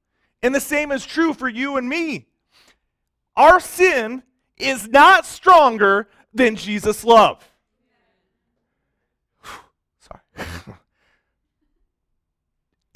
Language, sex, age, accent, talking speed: English, male, 40-59, American, 85 wpm